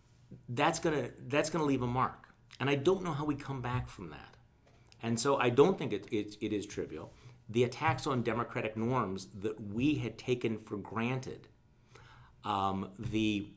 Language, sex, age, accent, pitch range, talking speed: English, male, 40-59, American, 110-135 Hz, 180 wpm